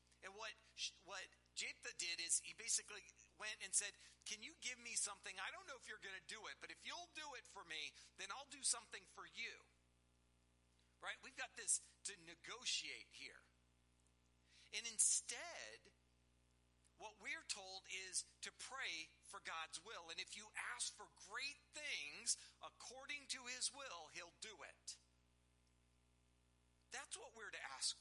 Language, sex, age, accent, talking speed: English, male, 50-69, American, 160 wpm